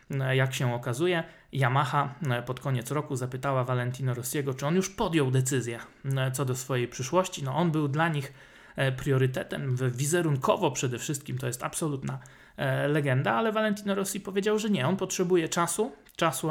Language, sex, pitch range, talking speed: Polish, male, 130-160 Hz, 150 wpm